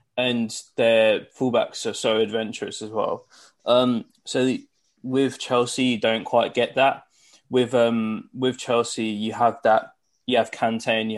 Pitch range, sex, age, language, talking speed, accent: 110-130 Hz, male, 20-39, English, 155 wpm, British